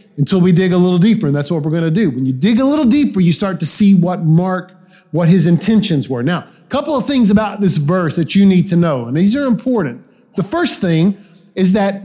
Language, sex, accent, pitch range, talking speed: English, male, American, 160-205 Hz, 255 wpm